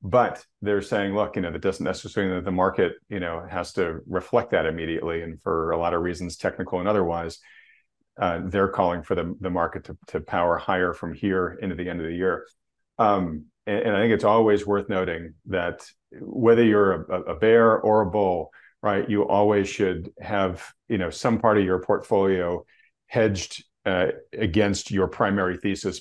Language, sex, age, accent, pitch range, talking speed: English, male, 40-59, American, 85-100 Hz, 195 wpm